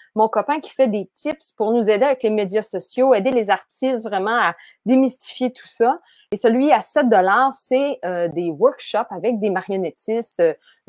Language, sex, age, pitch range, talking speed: English, female, 30-49, 190-260 Hz, 180 wpm